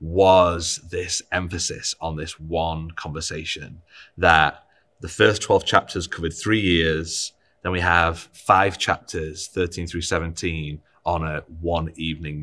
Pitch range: 80-90 Hz